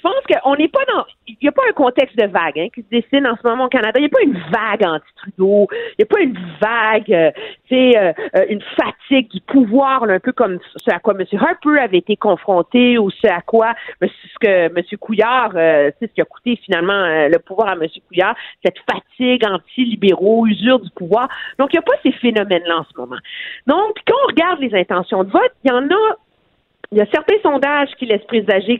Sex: female